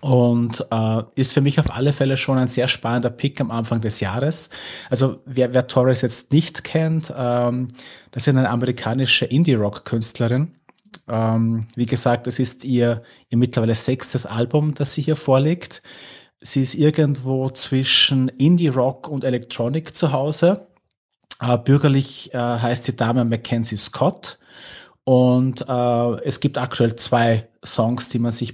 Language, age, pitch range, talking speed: German, 30-49, 115-140 Hz, 150 wpm